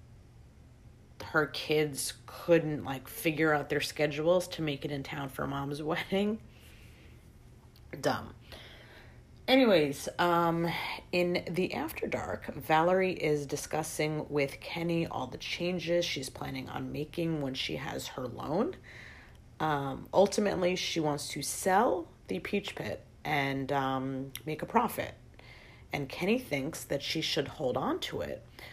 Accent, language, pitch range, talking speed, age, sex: American, English, 135-170 Hz, 135 wpm, 30-49, female